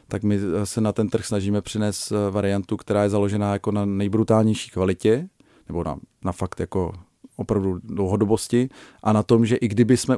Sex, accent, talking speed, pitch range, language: male, native, 175 wpm, 100-115 Hz, Czech